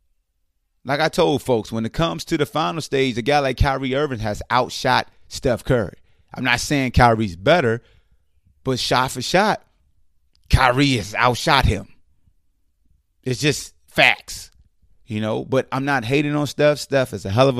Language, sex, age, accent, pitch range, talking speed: English, male, 30-49, American, 105-125 Hz, 165 wpm